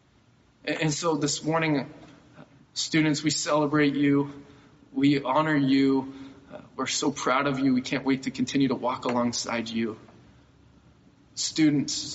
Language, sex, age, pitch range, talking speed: English, male, 20-39, 135-160 Hz, 130 wpm